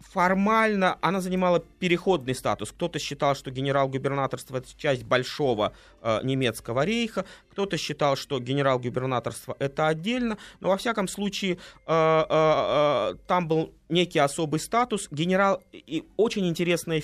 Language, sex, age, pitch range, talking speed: Russian, male, 20-39, 130-180 Hz, 130 wpm